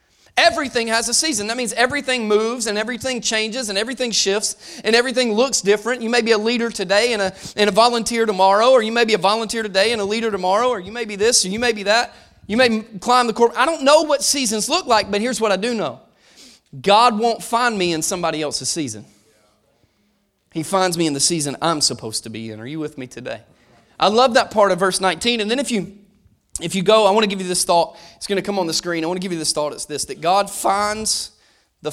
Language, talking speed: English, 250 wpm